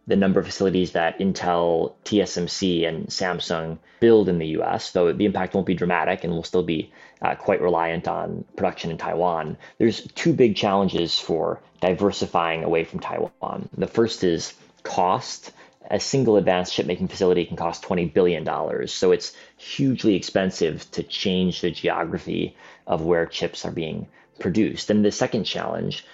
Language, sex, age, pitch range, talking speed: English, male, 30-49, 85-110 Hz, 160 wpm